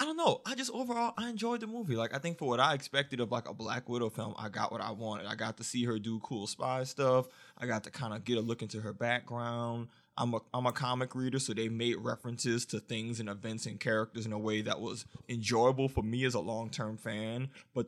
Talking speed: 260 wpm